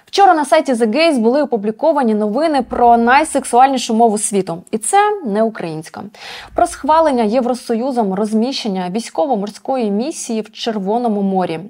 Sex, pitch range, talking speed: female, 200-265 Hz, 125 wpm